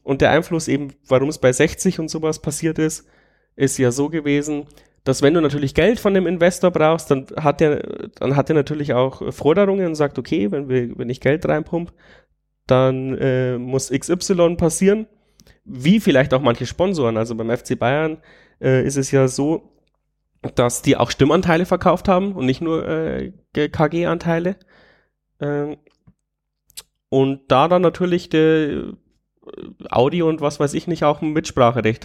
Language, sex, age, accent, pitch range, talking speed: German, male, 30-49, German, 130-165 Hz, 160 wpm